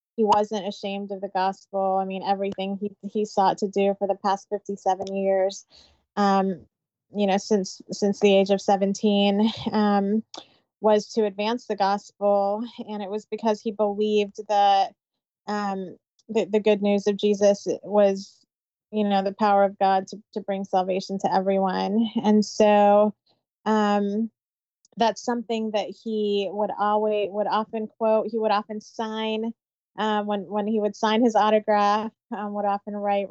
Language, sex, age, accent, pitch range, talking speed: English, female, 20-39, American, 200-215 Hz, 160 wpm